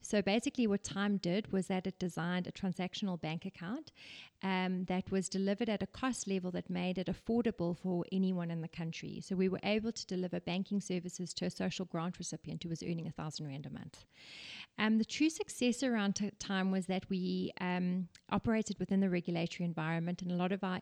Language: English